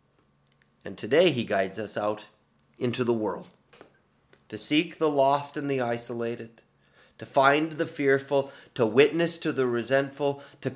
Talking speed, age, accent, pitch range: 145 wpm, 30-49, American, 110-160 Hz